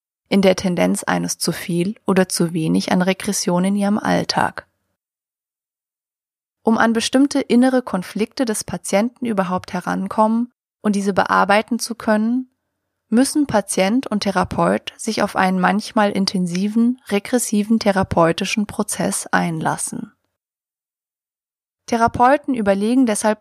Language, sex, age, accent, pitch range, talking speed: German, female, 20-39, German, 185-230 Hz, 115 wpm